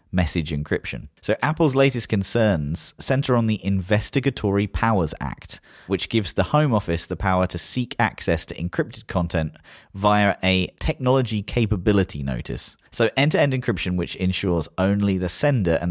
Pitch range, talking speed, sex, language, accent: 85-115 Hz, 145 wpm, male, English, British